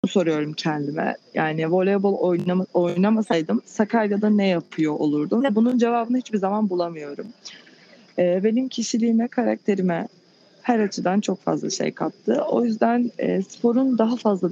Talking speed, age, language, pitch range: 115 wpm, 30-49, Turkish, 165-215 Hz